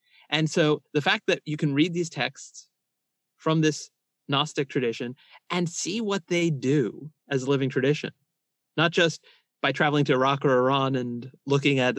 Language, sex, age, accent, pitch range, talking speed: English, male, 30-49, American, 135-170 Hz, 170 wpm